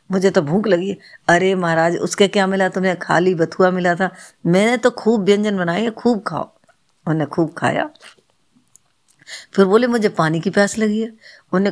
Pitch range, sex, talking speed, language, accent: 170-210 Hz, female, 175 wpm, Hindi, native